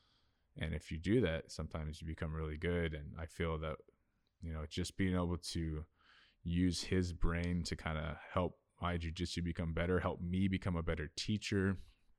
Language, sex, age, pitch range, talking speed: English, male, 20-39, 80-90 Hz, 185 wpm